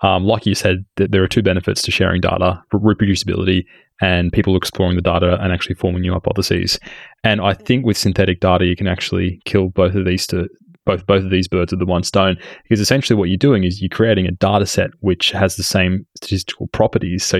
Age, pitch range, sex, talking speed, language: 20-39, 95-110 Hz, male, 220 wpm, English